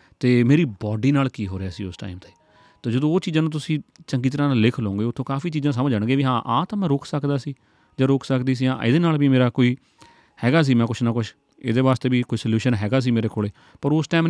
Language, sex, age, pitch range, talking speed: Punjabi, male, 30-49, 110-145 Hz, 300 wpm